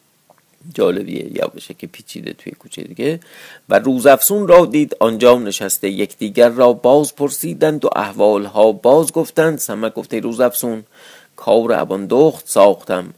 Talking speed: 125 wpm